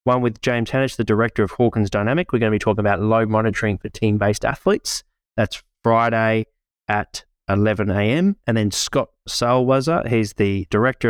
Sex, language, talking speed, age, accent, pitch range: male, English, 175 wpm, 20-39, Australian, 95-115 Hz